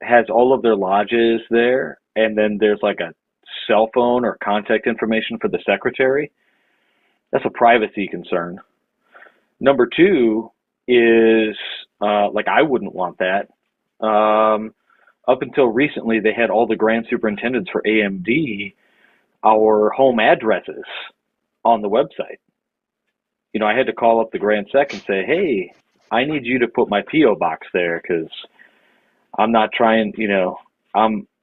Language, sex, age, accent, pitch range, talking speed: English, male, 40-59, American, 105-115 Hz, 150 wpm